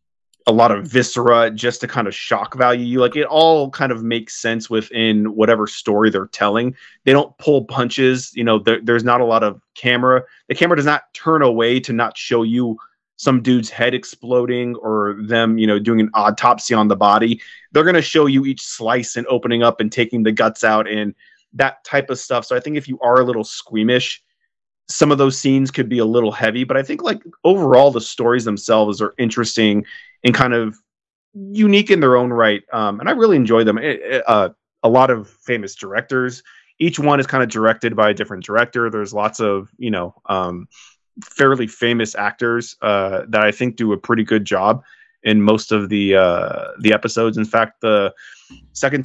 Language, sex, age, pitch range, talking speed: English, male, 30-49, 110-125 Hz, 205 wpm